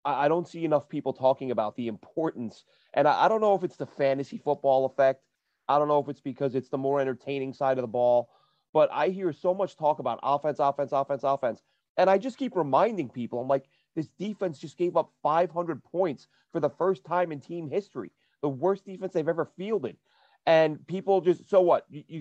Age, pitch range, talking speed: 30-49, 140-175 Hz, 215 wpm